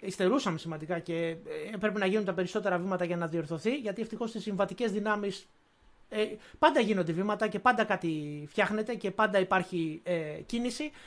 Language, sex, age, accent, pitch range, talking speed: Greek, male, 30-49, native, 185-245 Hz, 155 wpm